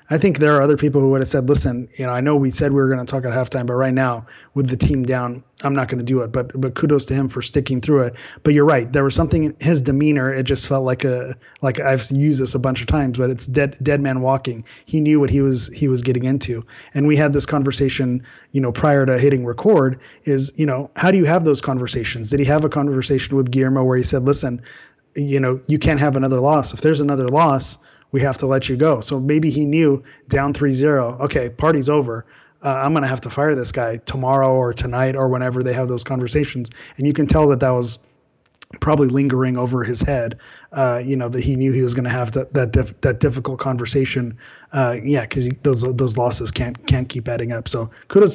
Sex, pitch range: male, 125-145 Hz